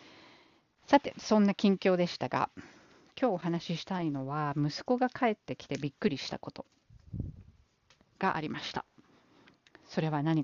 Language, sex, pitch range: Japanese, female, 155-245 Hz